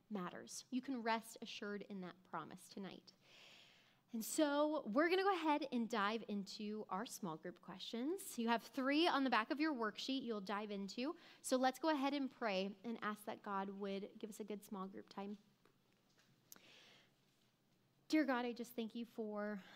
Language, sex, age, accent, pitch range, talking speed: English, female, 20-39, American, 205-255 Hz, 180 wpm